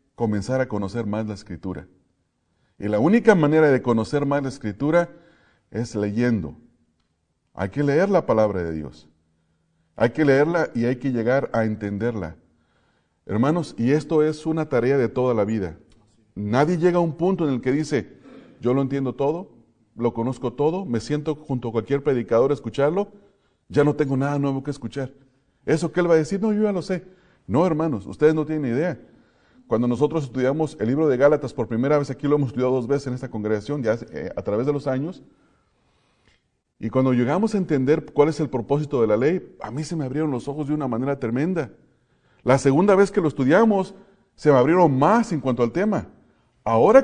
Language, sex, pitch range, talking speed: English, male, 115-155 Hz, 200 wpm